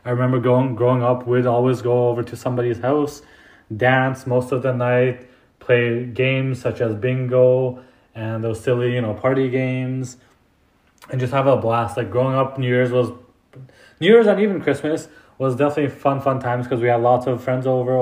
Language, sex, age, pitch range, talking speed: English, male, 20-39, 120-135 Hz, 190 wpm